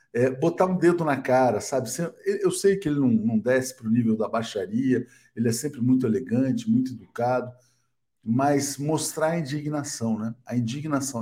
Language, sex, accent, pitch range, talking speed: Portuguese, male, Brazilian, 120-150 Hz, 175 wpm